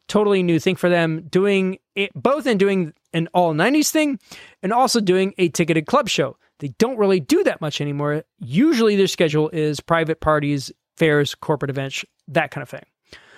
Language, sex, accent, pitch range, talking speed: English, male, American, 155-220 Hz, 185 wpm